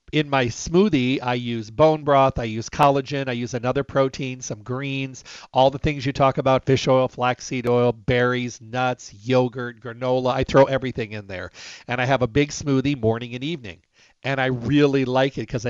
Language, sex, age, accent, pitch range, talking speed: English, male, 50-69, American, 120-140 Hz, 190 wpm